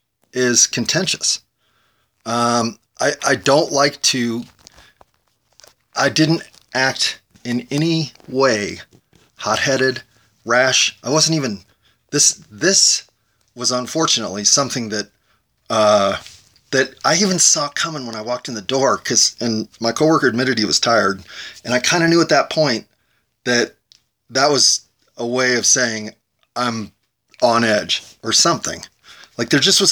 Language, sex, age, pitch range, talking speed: English, male, 30-49, 115-145 Hz, 140 wpm